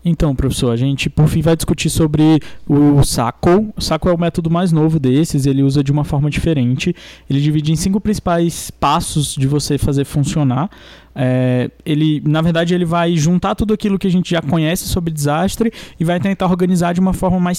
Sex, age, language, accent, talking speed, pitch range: male, 20-39, Portuguese, Brazilian, 195 wpm, 145-180 Hz